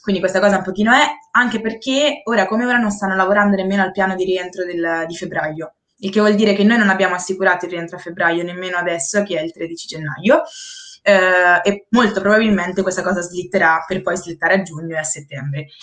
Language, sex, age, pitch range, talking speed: Italian, female, 20-39, 180-210 Hz, 215 wpm